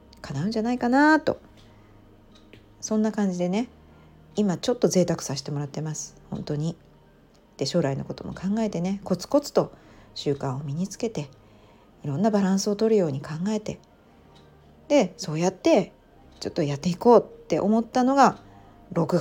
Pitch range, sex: 140-220 Hz, female